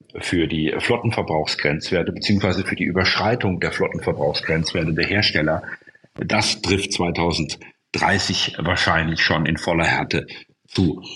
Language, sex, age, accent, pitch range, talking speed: German, male, 40-59, German, 90-110 Hz, 110 wpm